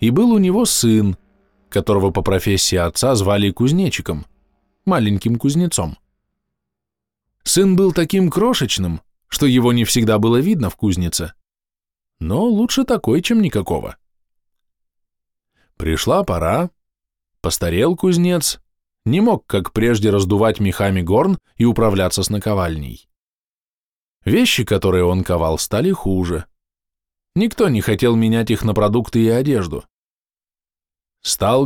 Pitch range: 85-130 Hz